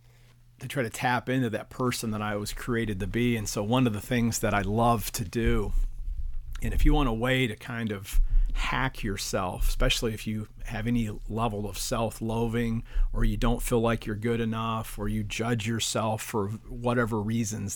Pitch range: 105-120 Hz